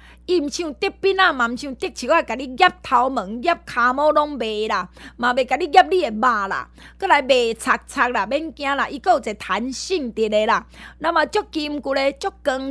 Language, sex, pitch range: Chinese, female, 225-325 Hz